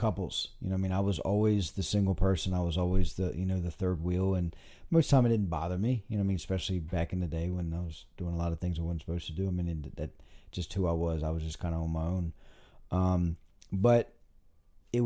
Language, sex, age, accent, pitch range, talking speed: English, male, 40-59, American, 85-100 Hz, 280 wpm